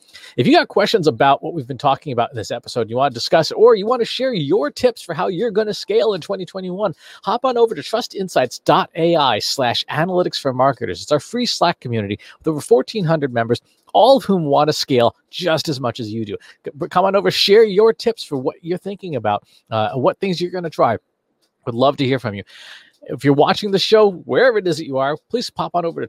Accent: American